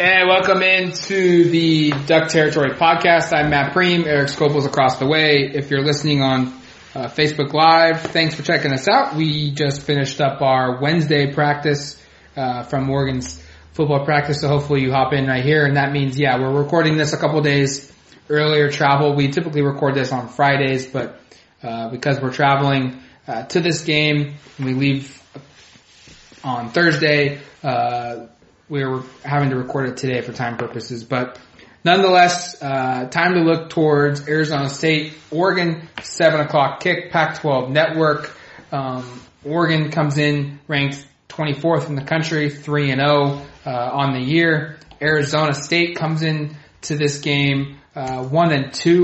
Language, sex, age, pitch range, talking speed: English, male, 20-39, 135-155 Hz, 160 wpm